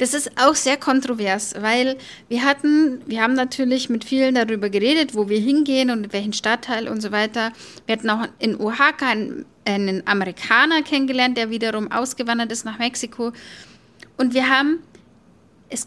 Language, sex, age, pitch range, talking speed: German, female, 10-29, 220-260 Hz, 160 wpm